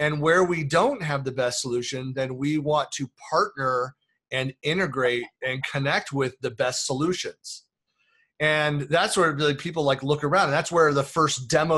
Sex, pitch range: male, 125-155 Hz